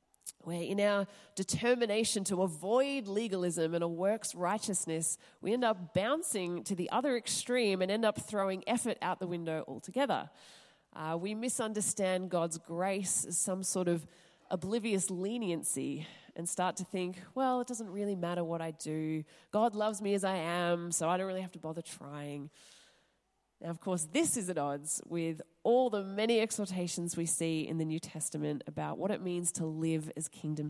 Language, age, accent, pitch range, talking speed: English, 20-39, Australian, 170-215 Hz, 180 wpm